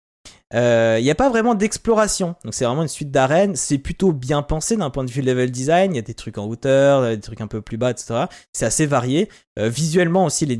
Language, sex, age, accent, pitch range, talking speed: French, male, 20-39, French, 110-145 Hz, 250 wpm